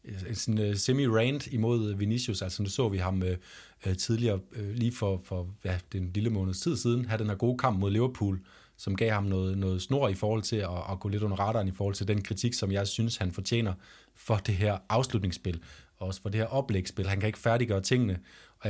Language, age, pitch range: Danish, 30-49, 95-115 Hz